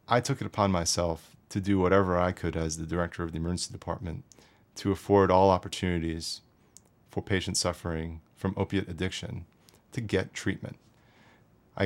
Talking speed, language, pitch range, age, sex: 155 wpm, English, 90-105 Hz, 30-49, male